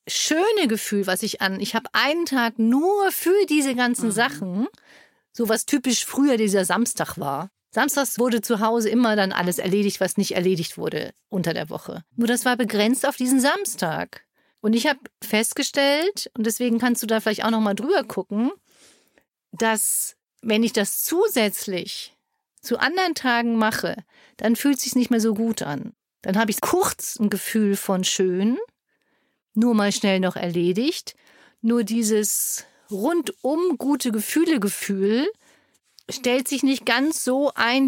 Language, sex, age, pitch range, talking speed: German, female, 50-69, 210-265 Hz, 160 wpm